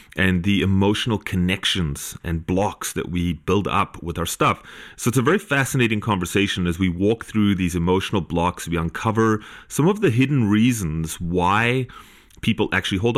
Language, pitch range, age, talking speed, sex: English, 85-110 Hz, 30-49, 170 wpm, male